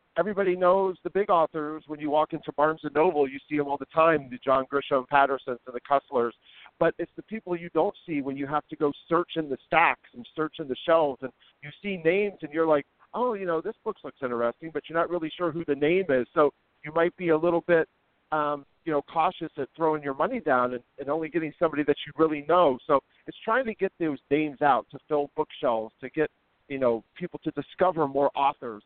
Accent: American